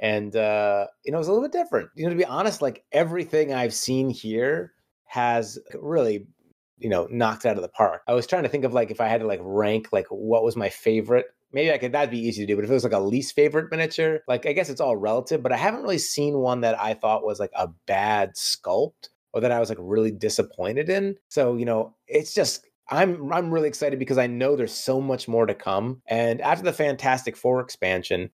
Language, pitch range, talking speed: English, 115-155 Hz, 245 wpm